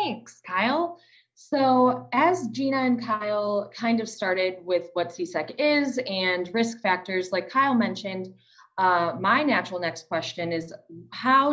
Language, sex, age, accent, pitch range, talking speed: English, female, 20-39, American, 165-230 Hz, 140 wpm